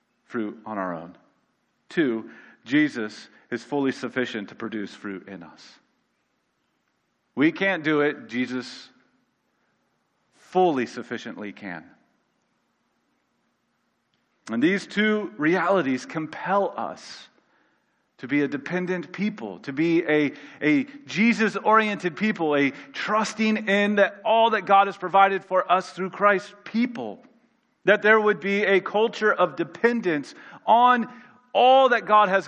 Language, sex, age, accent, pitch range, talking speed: English, male, 40-59, American, 135-215 Hz, 120 wpm